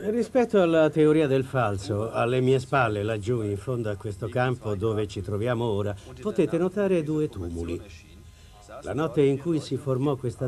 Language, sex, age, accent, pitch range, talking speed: Italian, male, 50-69, native, 105-155 Hz, 165 wpm